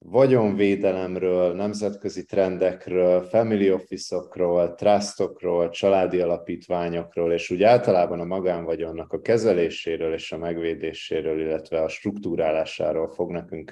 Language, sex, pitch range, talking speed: Hungarian, male, 80-95 Hz, 100 wpm